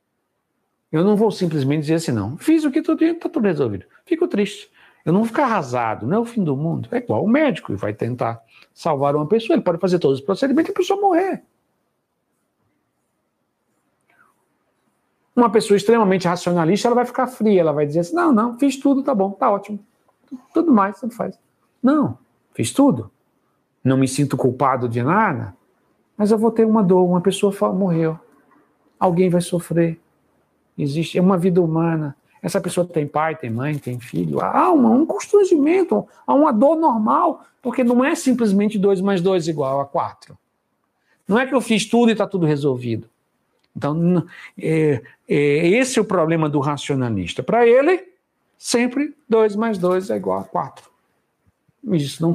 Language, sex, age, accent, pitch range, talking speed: Portuguese, male, 60-79, Brazilian, 150-245 Hz, 180 wpm